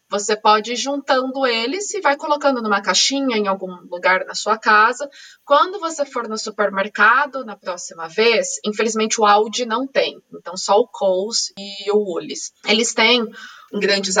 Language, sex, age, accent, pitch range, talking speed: Portuguese, female, 20-39, Brazilian, 205-255 Hz, 165 wpm